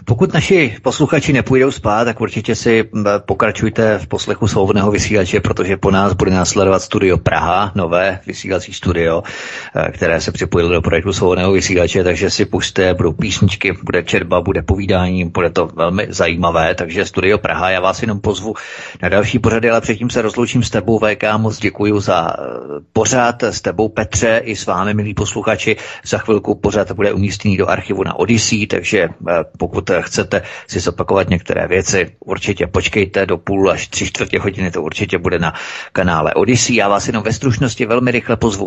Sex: male